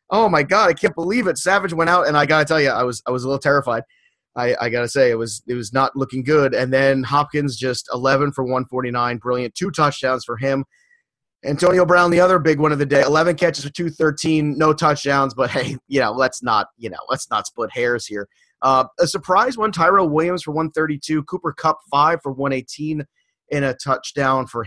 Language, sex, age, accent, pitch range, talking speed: English, male, 30-49, American, 130-155 Hz, 225 wpm